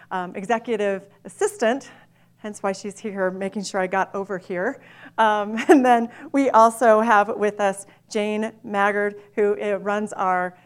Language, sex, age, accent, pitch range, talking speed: English, female, 40-59, American, 190-220 Hz, 145 wpm